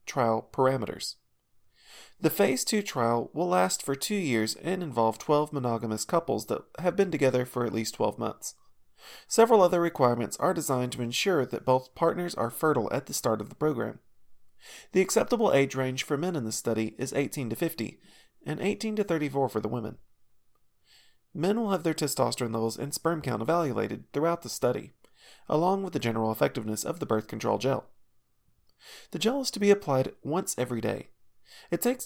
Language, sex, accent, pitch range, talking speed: English, male, American, 120-175 Hz, 180 wpm